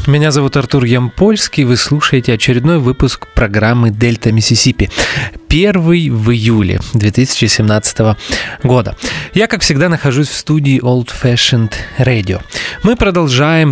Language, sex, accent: Russian, male, native